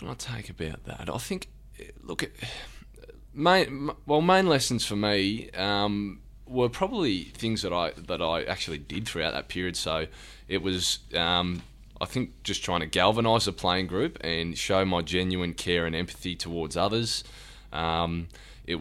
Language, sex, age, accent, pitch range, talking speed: English, male, 20-39, Australian, 85-105 Hz, 160 wpm